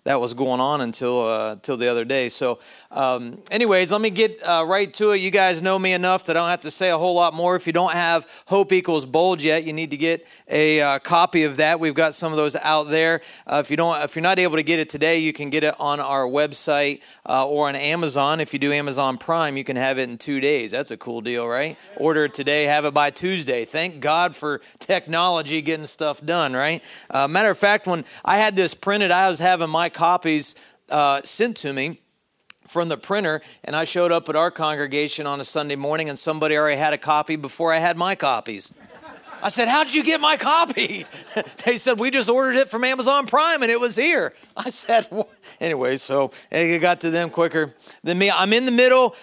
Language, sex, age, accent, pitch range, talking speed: English, male, 40-59, American, 140-180 Hz, 240 wpm